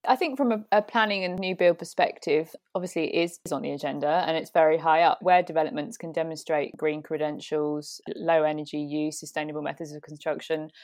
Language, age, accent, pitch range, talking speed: English, 20-39, British, 155-180 Hz, 190 wpm